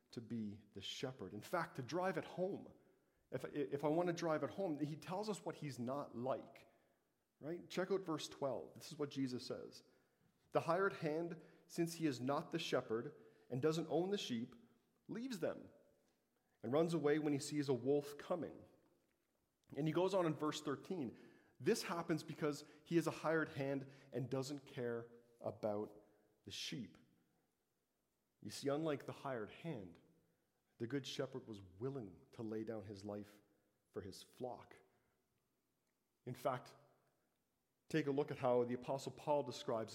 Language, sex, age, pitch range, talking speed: English, male, 40-59, 115-160 Hz, 165 wpm